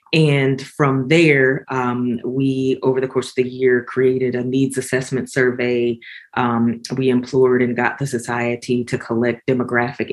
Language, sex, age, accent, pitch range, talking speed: English, female, 20-39, American, 120-135 Hz, 155 wpm